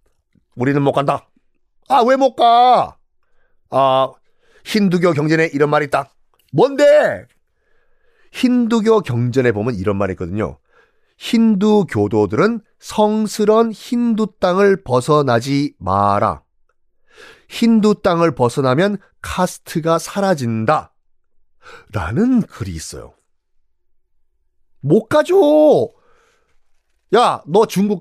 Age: 30-49